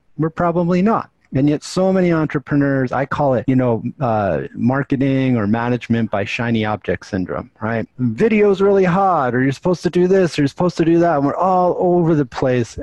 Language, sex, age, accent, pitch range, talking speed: English, male, 50-69, American, 110-150 Hz, 200 wpm